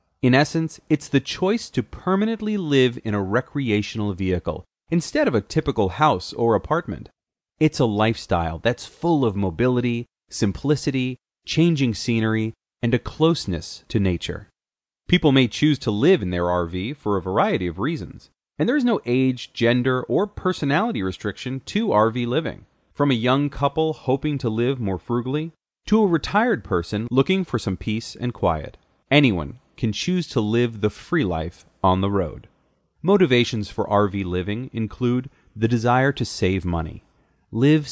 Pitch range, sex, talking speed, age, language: 100-150 Hz, male, 160 wpm, 30-49, English